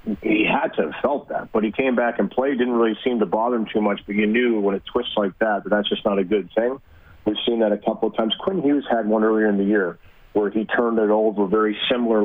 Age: 30-49